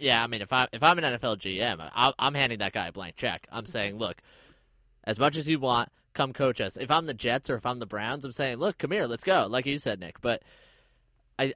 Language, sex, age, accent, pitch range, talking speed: English, male, 20-39, American, 120-150 Hz, 265 wpm